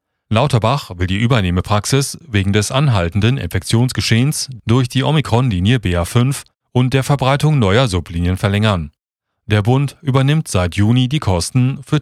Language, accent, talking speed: German, German, 130 wpm